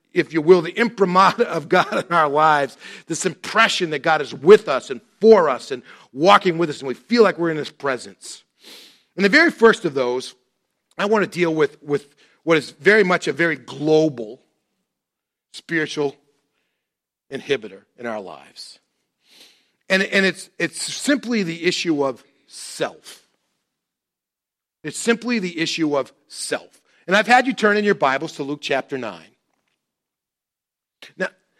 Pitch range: 145-200 Hz